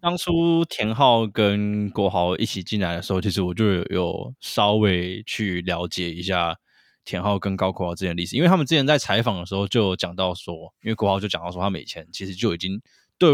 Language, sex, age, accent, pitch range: Chinese, male, 20-39, native, 95-125 Hz